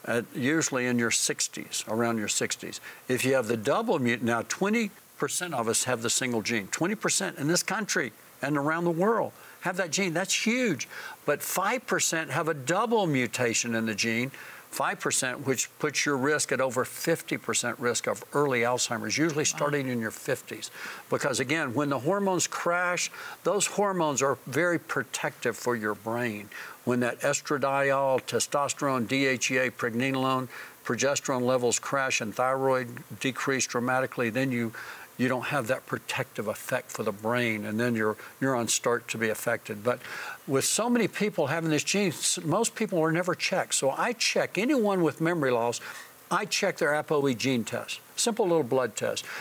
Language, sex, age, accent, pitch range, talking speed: English, male, 60-79, American, 120-165 Hz, 165 wpm